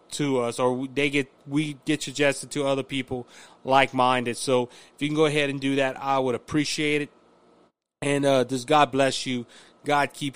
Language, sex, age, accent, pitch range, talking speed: English, male, 30-49, American, 130-155 Hz, 190 wpm